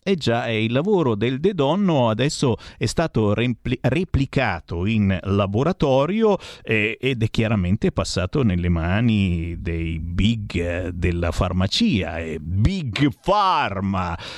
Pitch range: 100-140 Hz